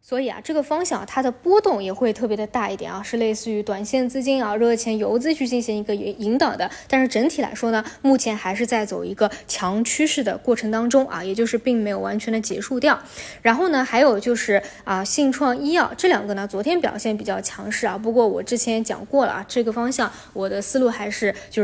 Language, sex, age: Chinese, female, 20-39